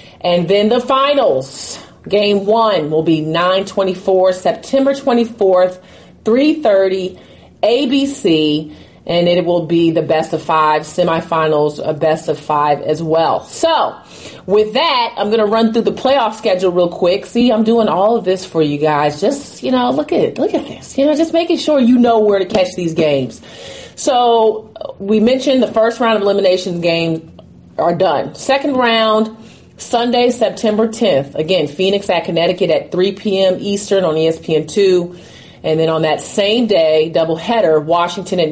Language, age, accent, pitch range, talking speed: English, 30-49, American, 165-220 Hz, 165 wpm